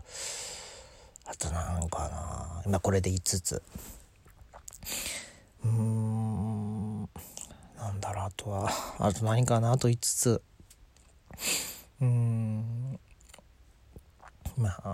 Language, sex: Japanese, male